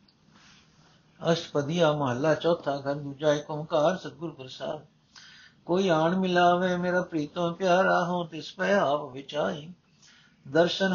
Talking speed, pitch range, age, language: 105 wpm, 145-175 Hz, 60-79, Punjabi